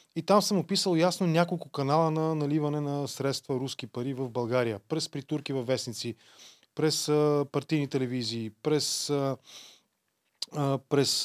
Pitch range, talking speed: 120-150 Hz, 140 wpm